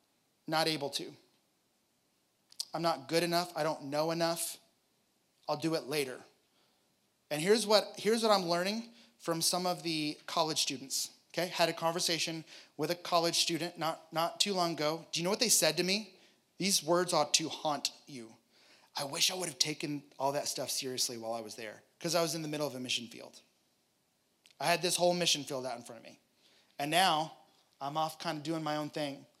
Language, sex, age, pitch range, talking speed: English, male, 30-49, 150-180 Hz, 205 wpm